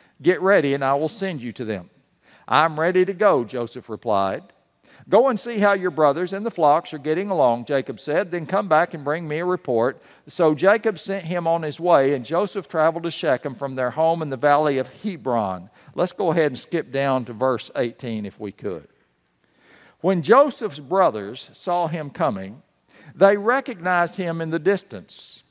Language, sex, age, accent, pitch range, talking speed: English, male, 50-69, American, 145-200 Hz, 190 wpm